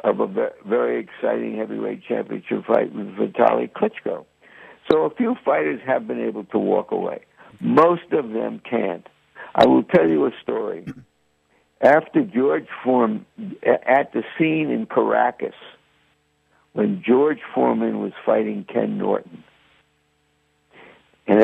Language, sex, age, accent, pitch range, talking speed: English, male, 60-79, American, 75-125 Hz, 130 wpm